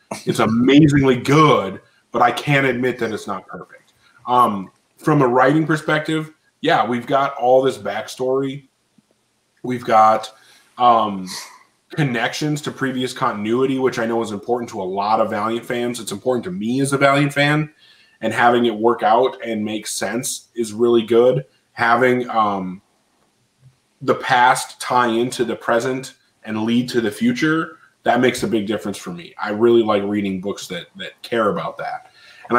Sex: male